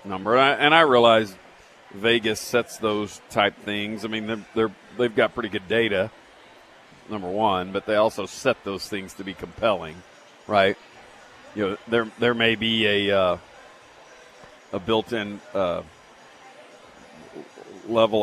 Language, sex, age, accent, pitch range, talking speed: English, male, 50-69, American, 105-130 Hz, 135 wpm